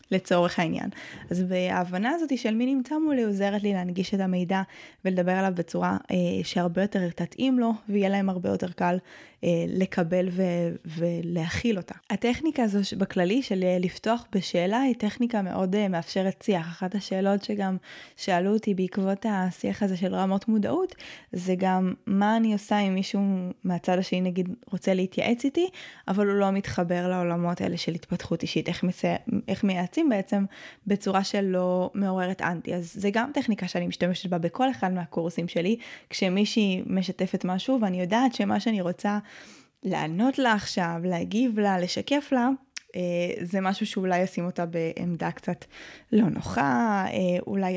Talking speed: 155 wpm